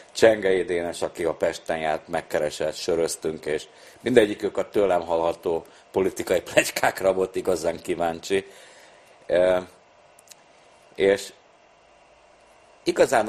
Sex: male